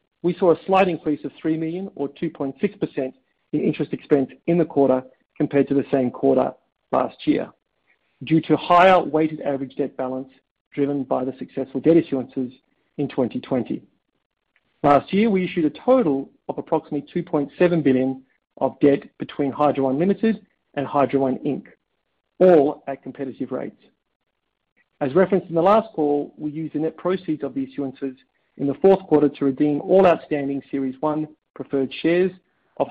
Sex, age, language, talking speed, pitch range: male, 50-69, English, 160 wpm, 140-170 Hz